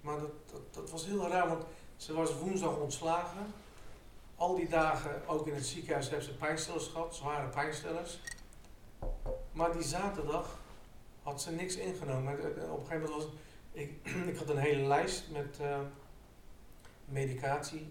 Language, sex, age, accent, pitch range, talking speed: Dutch, male, 50-69, Dutch, 125-150 Hz, 155 wpm